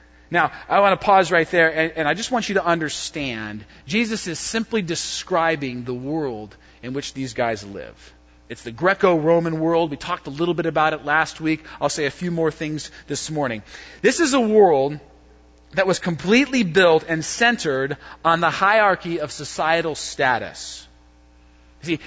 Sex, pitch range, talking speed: male, 145-200 Hz, 175 wpm